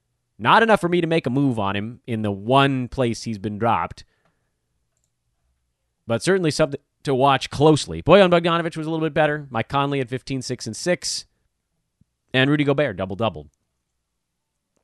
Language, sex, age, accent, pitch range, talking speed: English, male, 30-49, American, 110-160 Hz, 160 wpm